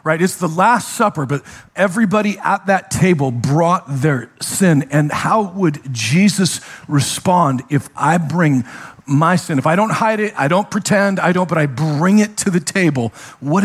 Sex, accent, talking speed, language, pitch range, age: male, American, 180 wpm, English, 120-160 Hz, 50-69